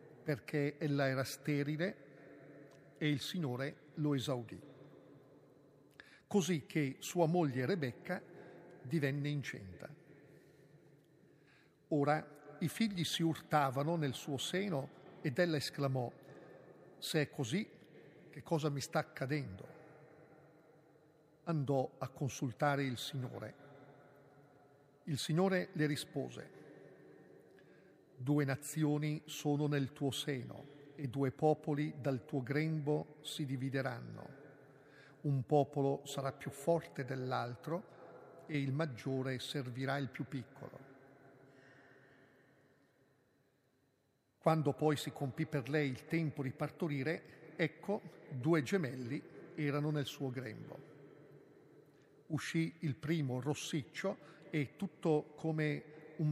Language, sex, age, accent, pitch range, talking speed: Italian, male, 50-69, native, 135-155 Hz, 100 wpm